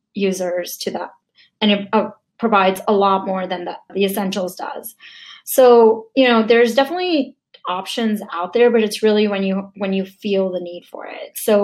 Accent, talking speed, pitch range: American, 180 wpm, 190-225 Hz